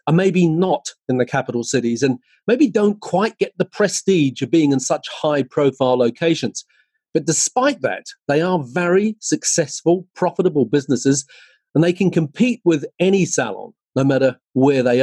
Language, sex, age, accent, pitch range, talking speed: English, male, 40-59, British, 135-185 Hz, 160 wpm